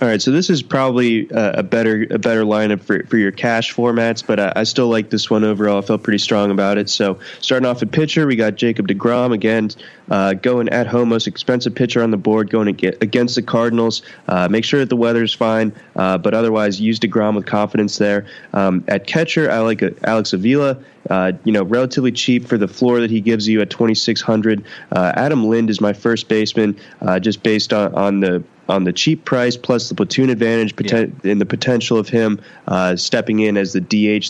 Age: 20-39